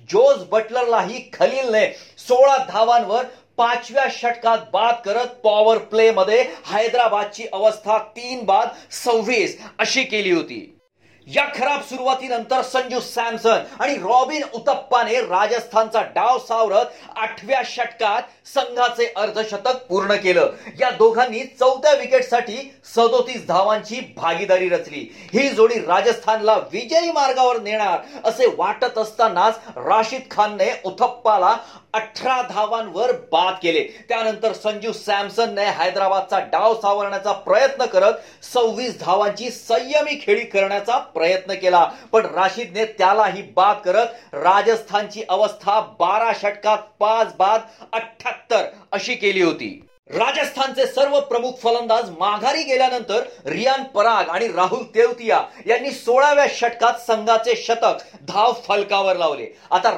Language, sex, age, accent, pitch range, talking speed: Marathi, male, 40-59, native, 210-255 Hz, 85 wpm